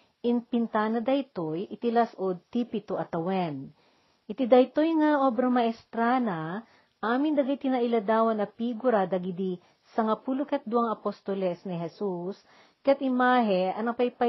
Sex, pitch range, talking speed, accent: female, 195-250 Hz, 105 wpm, native